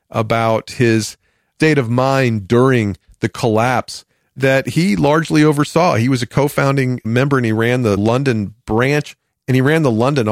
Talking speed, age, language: 165 wpm, 40-59, English